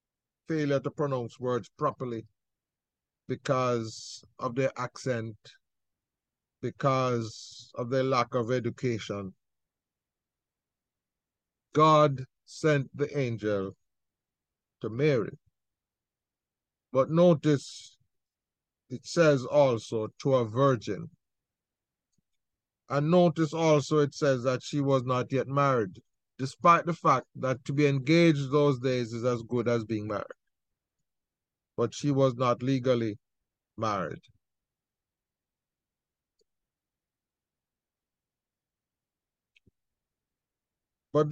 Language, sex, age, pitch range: English, male, 50-69, 120-150 Hz